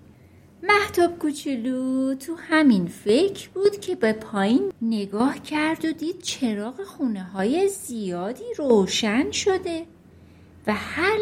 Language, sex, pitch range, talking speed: Persian, female, 235-345 Hz, 105 wpm